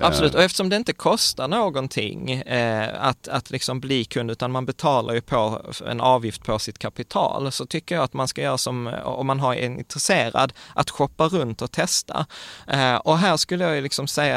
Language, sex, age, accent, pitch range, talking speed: Swedish, male, 20-39, native, 110-140 Hz, 200 wpm